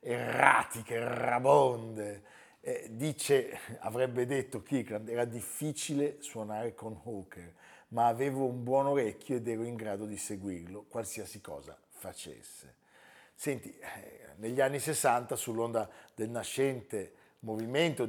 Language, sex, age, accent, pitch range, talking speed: Italian, male, 50-69, native, 110-140 Hz, 115 wpm